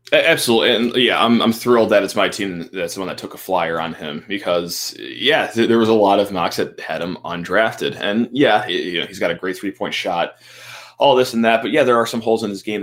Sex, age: male, 20-39